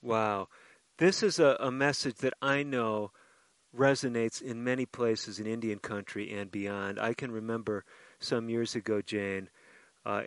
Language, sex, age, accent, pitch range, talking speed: English, male, 40-59, American, 110-130 Hz, 150 wpm